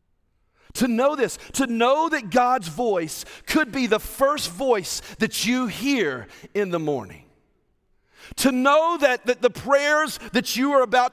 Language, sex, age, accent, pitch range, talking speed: English, male, 40-59, American, 175-250 Hz, 155 wpm